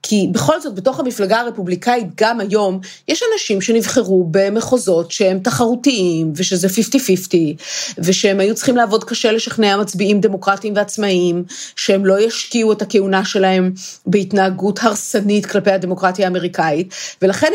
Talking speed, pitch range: 125 wpm, 185-235 Hz